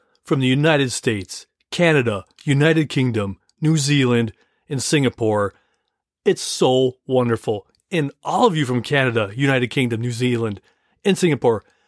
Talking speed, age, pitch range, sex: 130 wpm, 30-49, 115-150 Hz, male